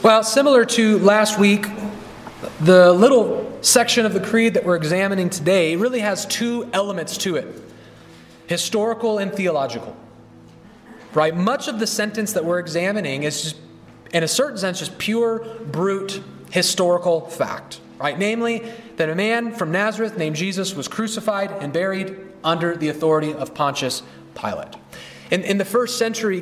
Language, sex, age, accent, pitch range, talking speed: English, male, 30-49, American, 150-200 Hz, 150 wpm